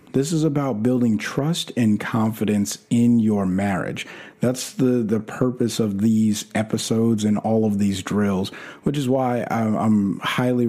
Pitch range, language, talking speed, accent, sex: 110-130 Hz, English, 150 wpm, American, male